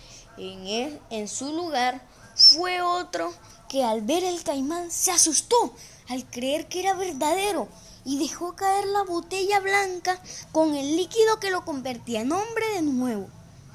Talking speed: 155 wpm